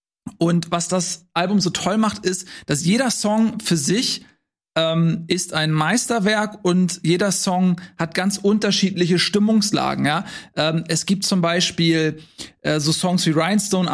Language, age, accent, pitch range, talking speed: German, 40-59, German, 165-205 Hz, 150 wpm